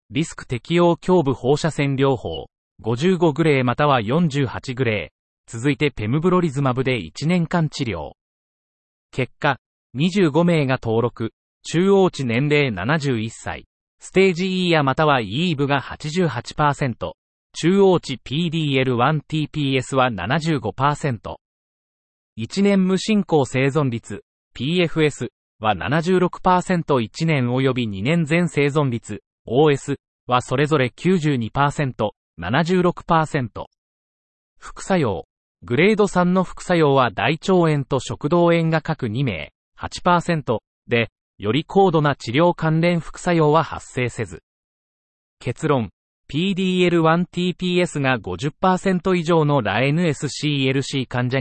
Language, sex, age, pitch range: Japanese, male, 40-59, 125-170 Hz